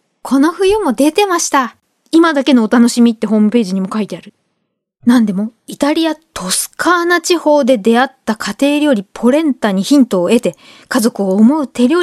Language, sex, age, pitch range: Japanese, female, 20-39, 225-310 Hz